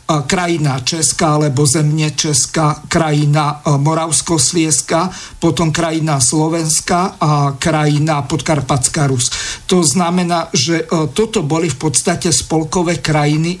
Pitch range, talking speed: 150-170 Hz, 105 wpm